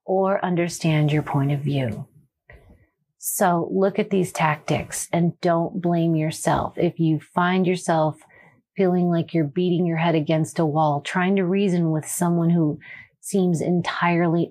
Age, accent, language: 40-59, American, English